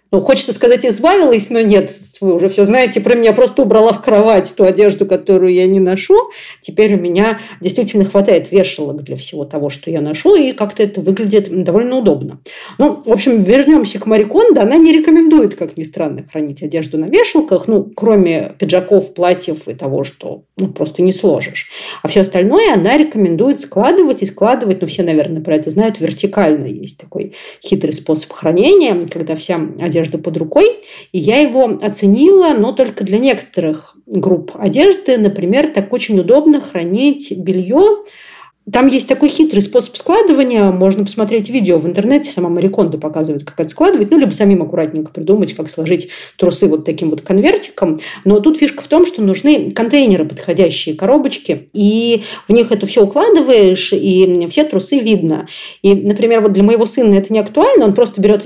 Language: Russian